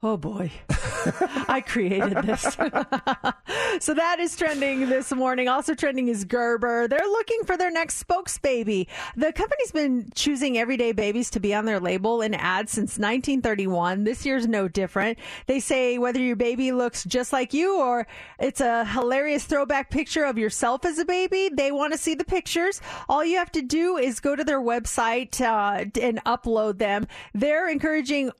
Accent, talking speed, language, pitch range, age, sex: American, 175 wpm, English, 210-280 Hz, 30-49, female